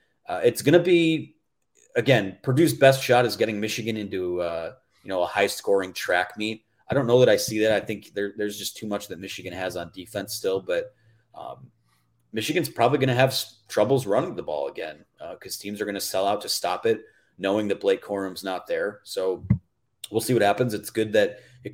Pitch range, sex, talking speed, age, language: 100-140 Hz, male, 210 wpm, 30-49, English